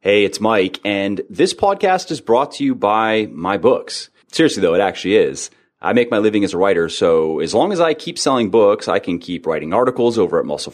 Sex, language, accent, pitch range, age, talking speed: male, English, American, 85-120 Hz, 30-49, 230 wpm